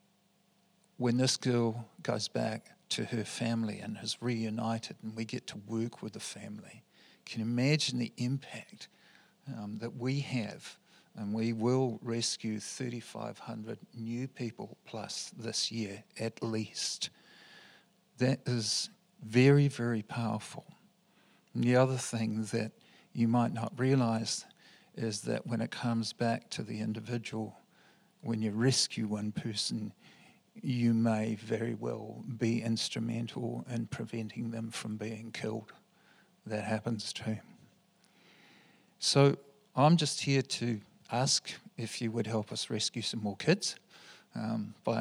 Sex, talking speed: male, 135 wpm